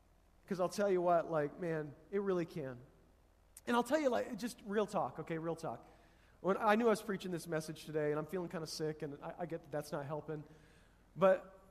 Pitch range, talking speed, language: 165-205 Hz, 230 wpm, English